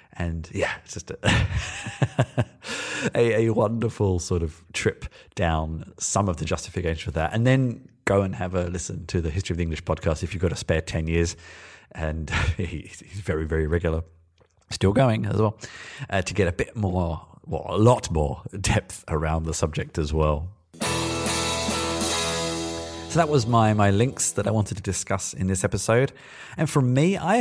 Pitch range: 85-105 Hz